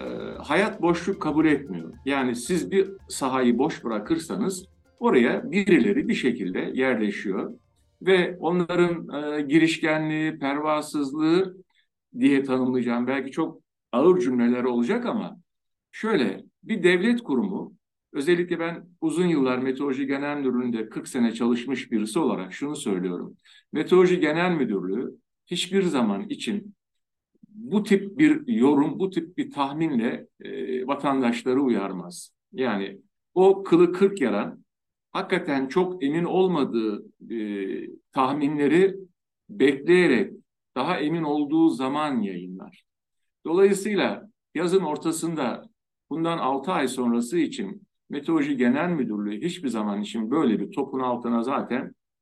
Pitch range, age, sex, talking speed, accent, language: 130-190 Hz, 60-79, male, 115 wpm, native, Turkish